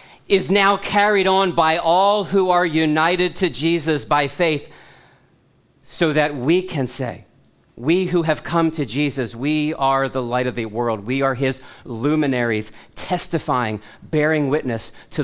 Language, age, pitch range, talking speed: English, 40-59, 125-155 Hz, 155 wpm